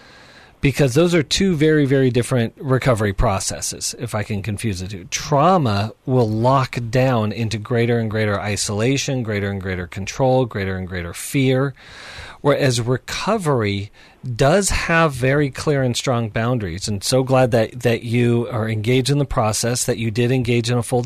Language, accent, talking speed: English, American, 170 wpm